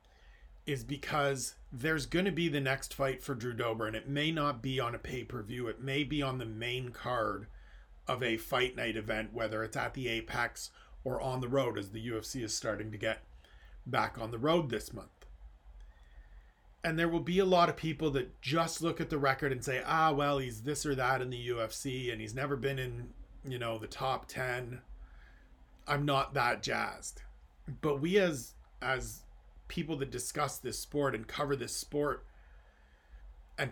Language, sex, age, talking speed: English, male, 40-59, 190 wpm